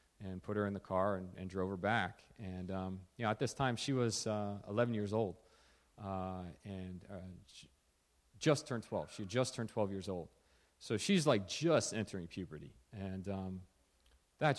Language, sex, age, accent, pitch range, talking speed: English, male, 40-59, American, 95-120 Hz, 190 wpm